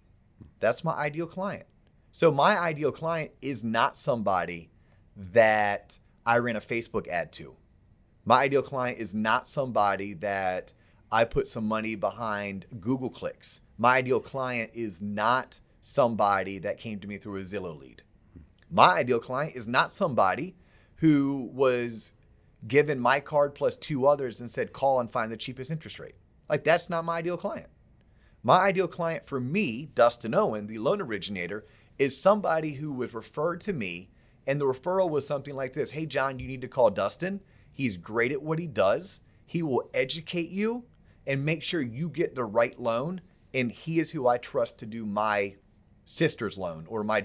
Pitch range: 110-160 Hz